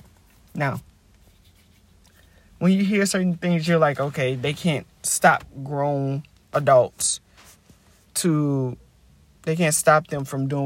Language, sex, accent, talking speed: English, male, American, 120 wpm